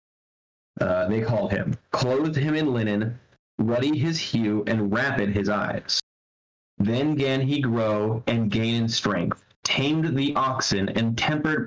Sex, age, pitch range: male, 30-49, 110-130 Hz